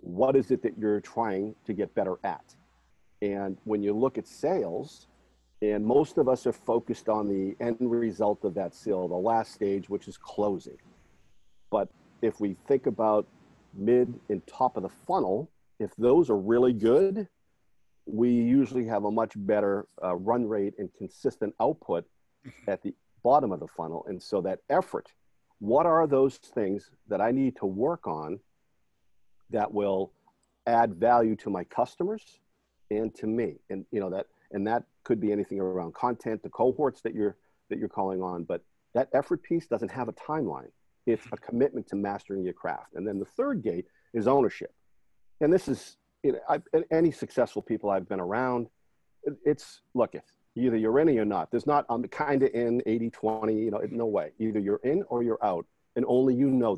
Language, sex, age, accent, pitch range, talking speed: English, male, 50-69, American, 100-120 Hz, 185 wpm